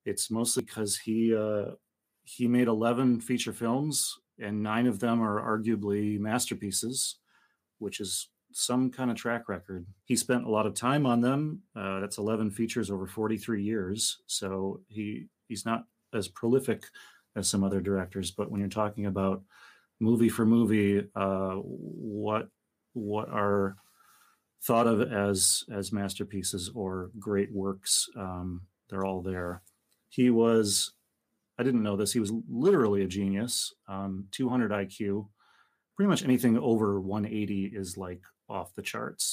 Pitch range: 100-115 Hz